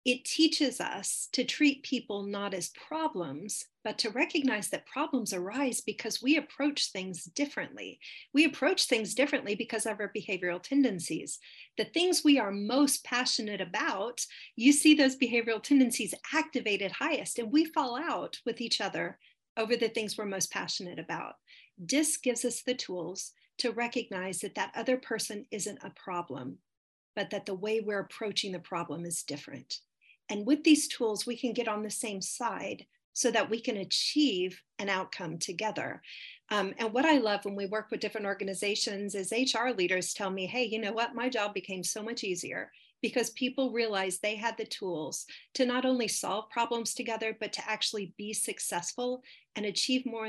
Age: 40-59